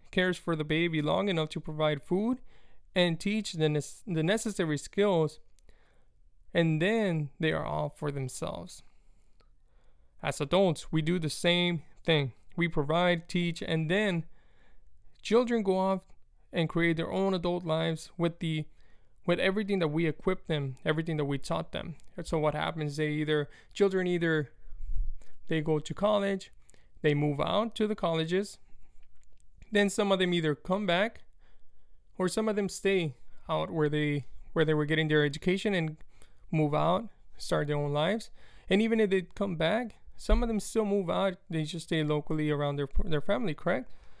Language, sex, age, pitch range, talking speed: English, male, 20-39, 150-190 Hz, 165 wpm